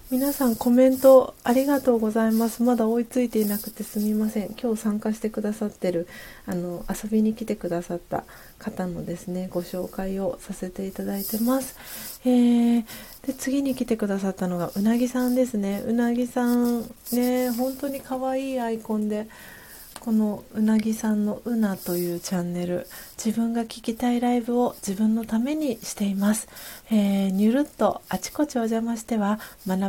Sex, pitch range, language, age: female, 190-240 Hz, Japanese, 30-49